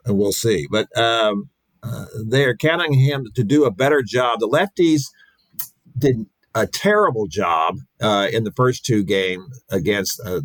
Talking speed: 160 wpm